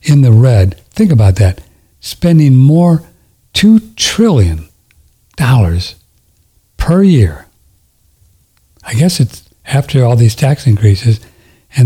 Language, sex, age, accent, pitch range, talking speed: English, male, 60-79, American, 90-125 Hz, 110 wpm